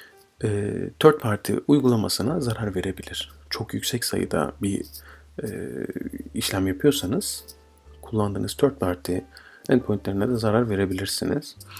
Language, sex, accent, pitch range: Turkish, male, native, 95-130 Hz